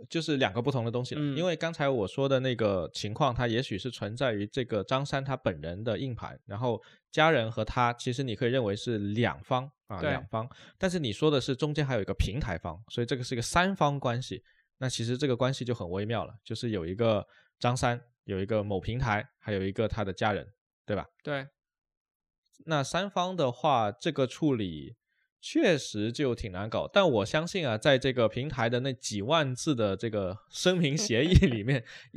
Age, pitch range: 20-39, 110-145 Hz